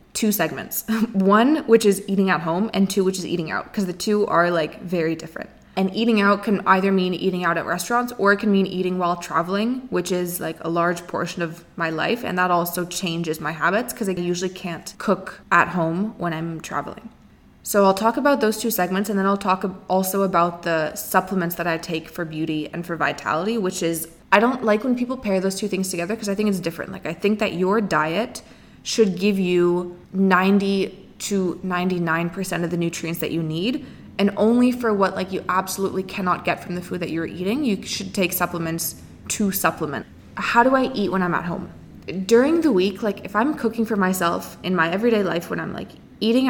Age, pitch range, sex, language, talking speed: 20-39, 175-210 Hz, female, English, 215 wpm